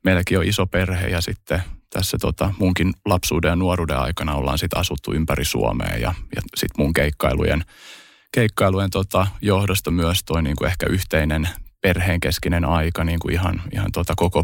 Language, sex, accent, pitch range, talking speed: Finnish, male, native, 80-95 Hz, 165 wpm